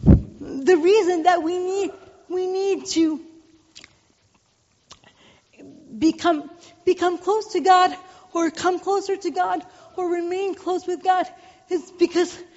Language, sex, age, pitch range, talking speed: English, female, 40-59, 310-360 Hz, 120 wpm